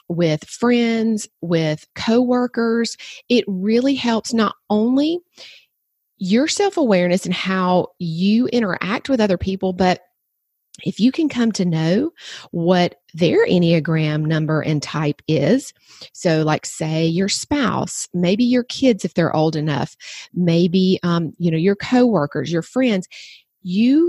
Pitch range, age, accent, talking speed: 170-230 Hz, 40-59, American, 140 wpm